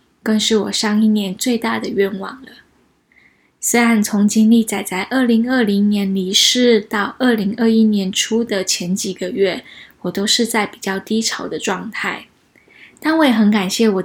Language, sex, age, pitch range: Chinese, female, 10-29, 200-230 Hz